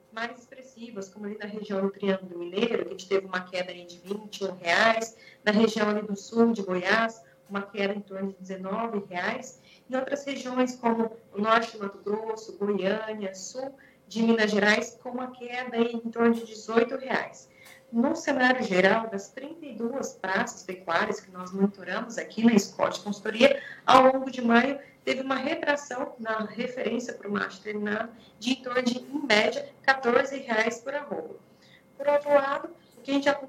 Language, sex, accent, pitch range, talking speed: Portuguese, female, Brazilian, 210-255 Hz, 170 wpm